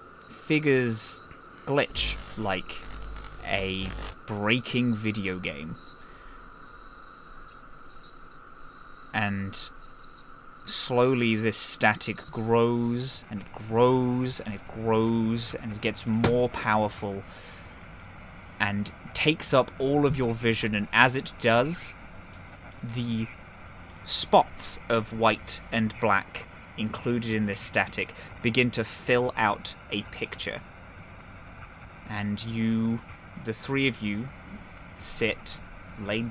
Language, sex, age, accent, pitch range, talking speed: English, male, 20-39, British, 100-120 Hz, 95 wpm